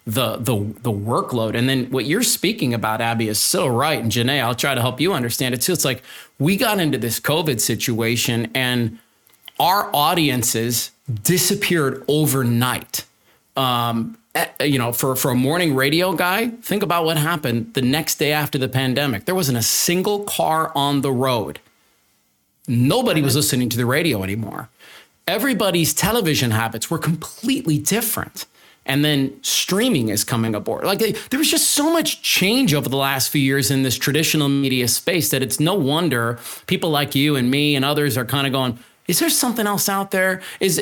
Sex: male